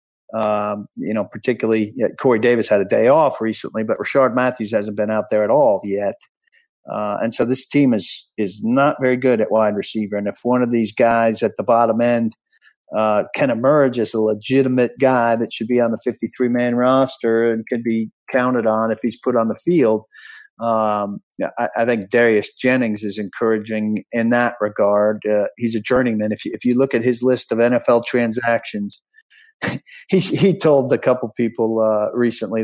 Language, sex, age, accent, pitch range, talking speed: English, male, 50-69, American, 110-130 Hz, 195 wpm